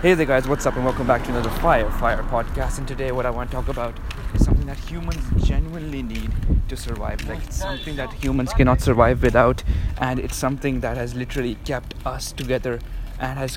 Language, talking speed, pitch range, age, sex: English, 210 wpm, 115-135 Hz, 20-39, male